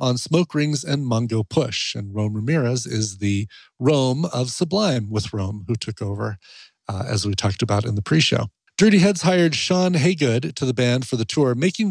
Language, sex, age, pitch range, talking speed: English, male, 40-59, 115-165 Hz, 195 wpm